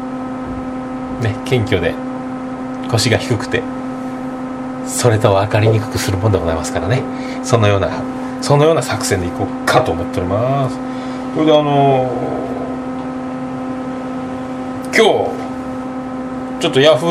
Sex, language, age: male, Japanese, 40-59